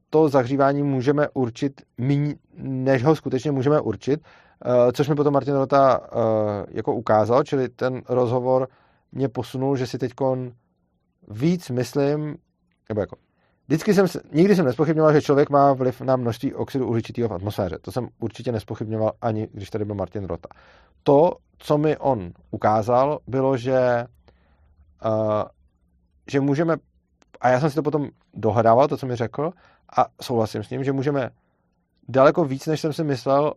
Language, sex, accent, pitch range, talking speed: Czech, male, native, 110-140 Hz, 150 wpm